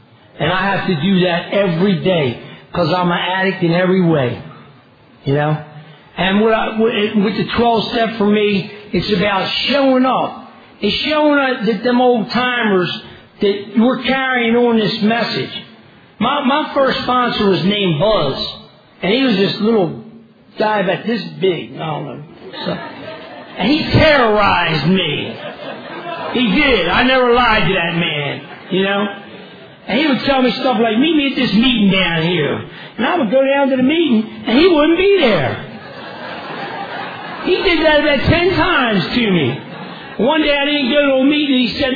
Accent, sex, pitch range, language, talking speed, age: American, male, 195-255 Hz, English, 175 wpm, 50-69